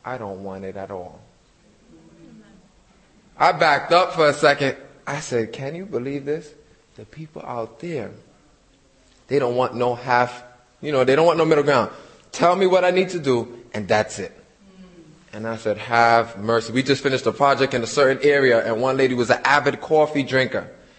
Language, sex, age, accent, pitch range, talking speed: English, male, 20-39, American, 120-170 Hz, 190 wpm